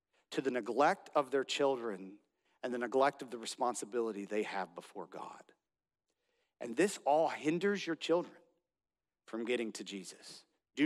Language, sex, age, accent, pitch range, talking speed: English, male, 40-59, American, 115-150 Hz, 150 wpm